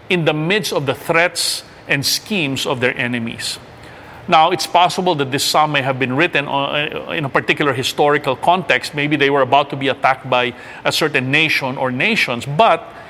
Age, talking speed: 50-69, 185 wpm